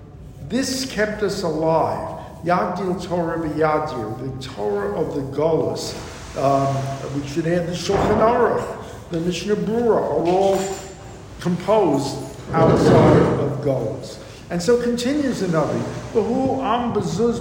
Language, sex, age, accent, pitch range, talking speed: English, male, 50-69, American, 150-200 Hz, 125 wpm